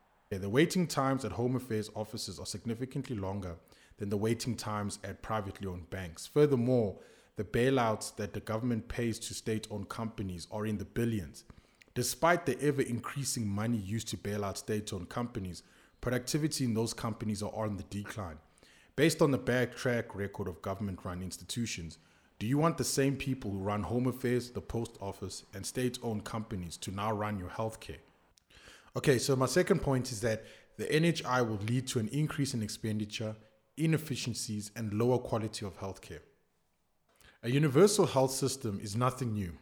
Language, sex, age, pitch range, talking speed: English, male, 20-39, 105-125 Hz, 165 wpm